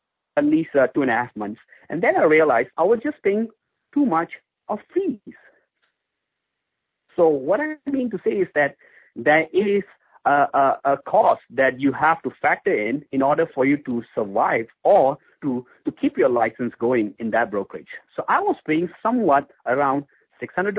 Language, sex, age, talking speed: English, male, 50-69, 175 wpm